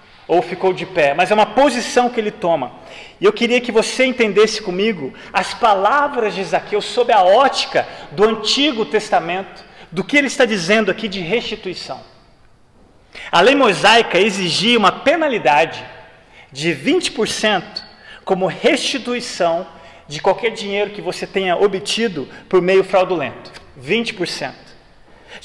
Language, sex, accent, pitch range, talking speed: Portuguese, male, Brazilian, 175-230 Hz, 135 wpm